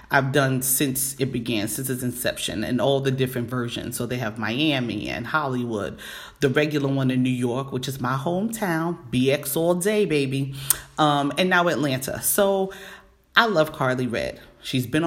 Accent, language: American, English